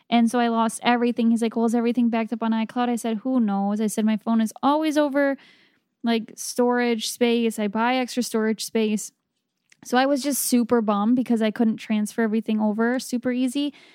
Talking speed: 200 wpm